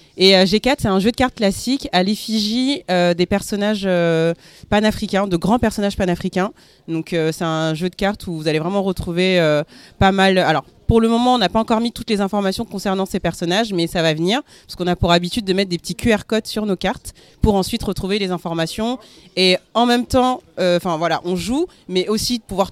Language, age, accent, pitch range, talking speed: French, 30-49, French, 175-225 Hz, 220 wpm